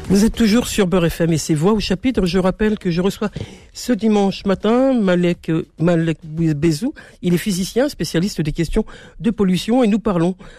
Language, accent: French, French